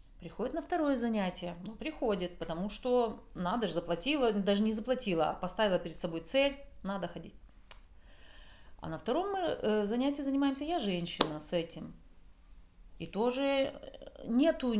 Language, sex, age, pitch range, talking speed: Russian, female, 40-59, 165-245 Hz, 135 wpm